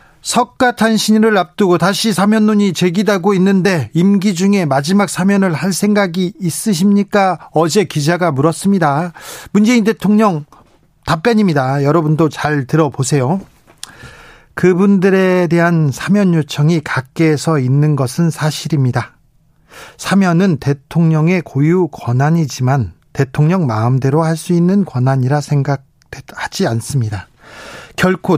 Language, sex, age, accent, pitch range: Korean, male, 40-59, native, 145-190 Hz